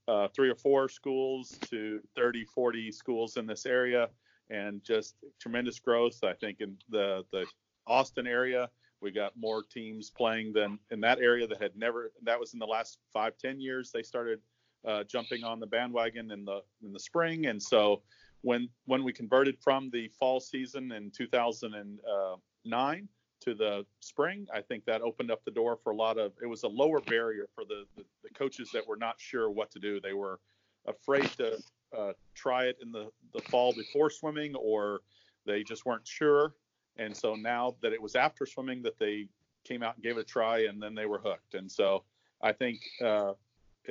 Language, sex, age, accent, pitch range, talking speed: English, male, 40-59, American, 110-130 Hz, 195 wpm